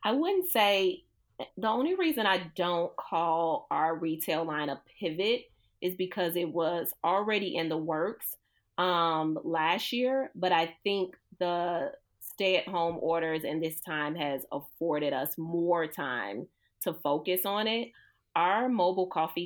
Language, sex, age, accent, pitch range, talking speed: English, female, 30-49, American, 160-190 Hz, 150 wpm